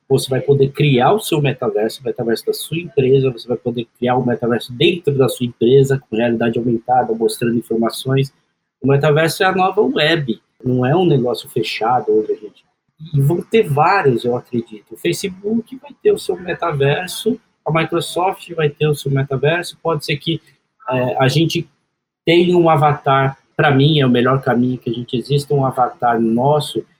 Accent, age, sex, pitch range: Brazilian, 20-39, male, 120-155 Hz